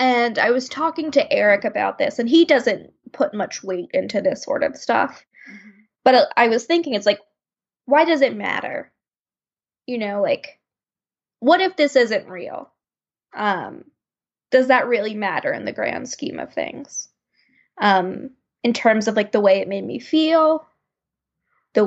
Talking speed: 165 wpm